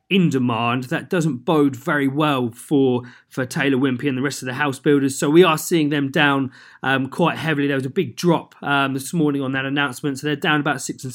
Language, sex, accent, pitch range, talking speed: English, male, British, 125-155 Hz, 235 wpm